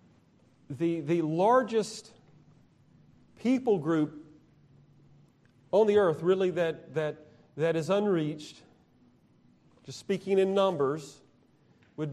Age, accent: 40-59, American